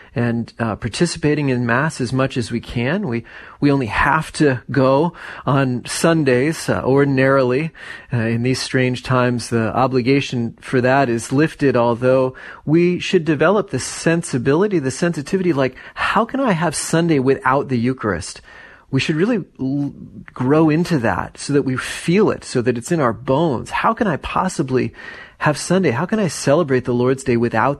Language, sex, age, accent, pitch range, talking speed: English, male, 30-49, American, 120-155 Hz, 170 wpm